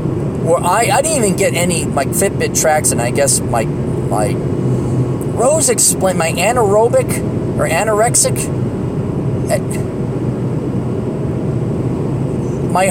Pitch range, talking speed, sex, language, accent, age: 120-150 Hz, 100 wpm, male, English, American, 30-49